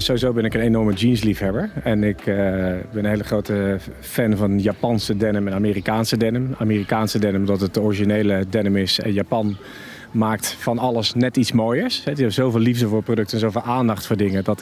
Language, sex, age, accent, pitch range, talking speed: Dutch, male, 40-59, Dutch, 110-135 Hz, 200 wpm